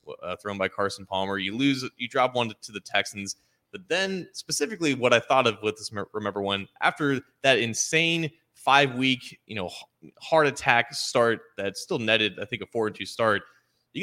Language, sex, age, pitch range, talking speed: English, male, 20-39, 100-135 Hz, 175 wpm